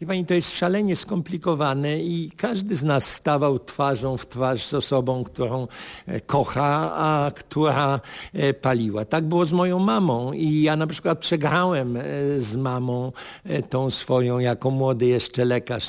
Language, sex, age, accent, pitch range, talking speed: Polish, male, 50-69, native, 130-155 Hz, 145 wpm